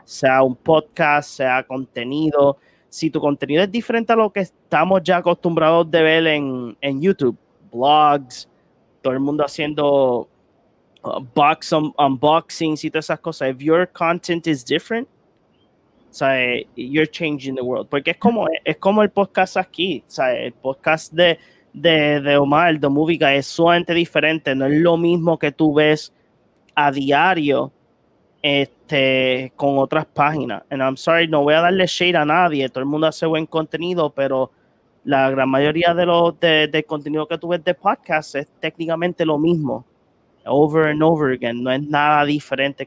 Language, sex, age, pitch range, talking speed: Spanish, male, 20-39, 140-165 Hz, 165 wpm